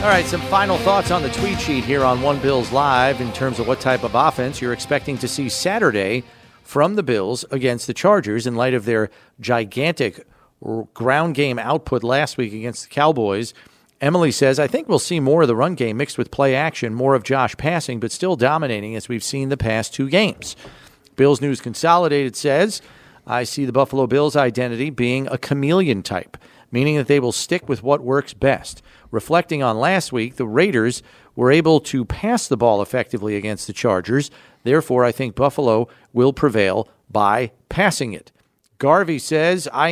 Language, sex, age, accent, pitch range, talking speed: English, male, 40-59, American, 120-150 Hz, 190 wpm